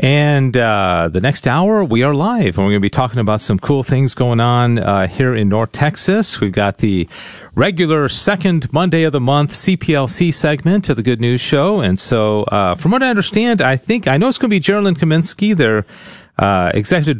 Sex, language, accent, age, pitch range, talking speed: male, English, American, 40-59, 105-165 Hz, 215 wpm